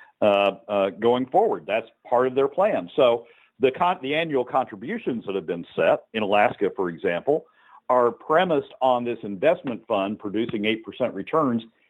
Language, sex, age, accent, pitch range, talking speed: English, male, 50-69, American, 100-130 Hz, 165 wpm